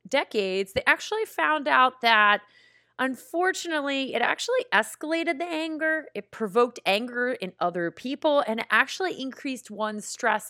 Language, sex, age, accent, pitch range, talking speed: English, female, 30-49, American, 190-285 Hz, 135 wpm